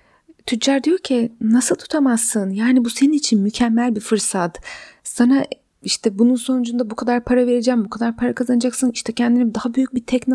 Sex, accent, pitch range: female, native, 200-255 Hz